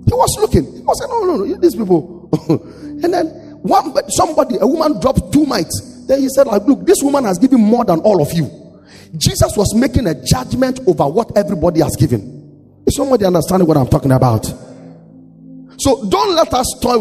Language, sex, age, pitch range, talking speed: English, male, 30-49, 145-240 Hz, 200 wpm